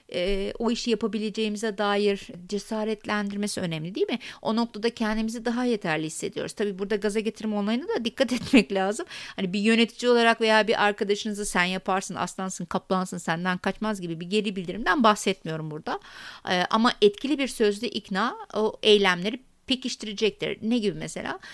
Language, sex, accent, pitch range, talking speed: Turkish, female, native, 180-230 Hz, 150 wpm